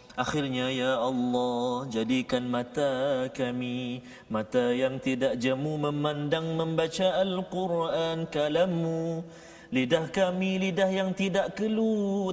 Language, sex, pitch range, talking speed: Malayalam, male, 130-185 Hz, 95 wpm